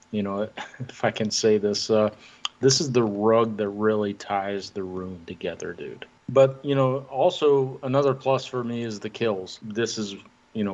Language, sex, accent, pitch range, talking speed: English, male, American, 105-130 Hz, 190 wpm